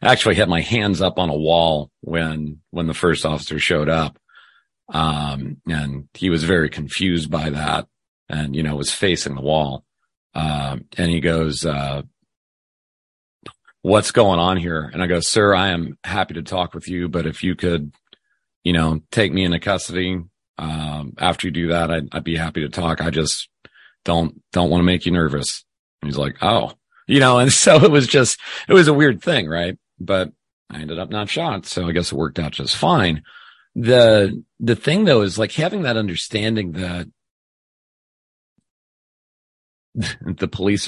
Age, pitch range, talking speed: 40-59, 75-95 Hz, 185 wpm